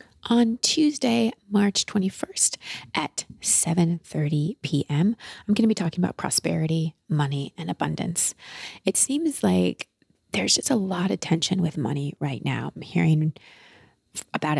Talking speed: 135 wpm